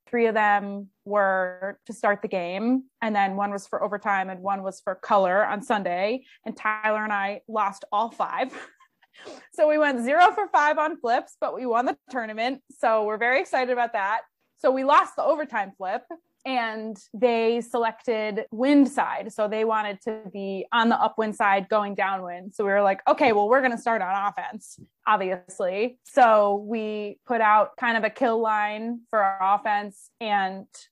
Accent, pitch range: American, 205-245 Hz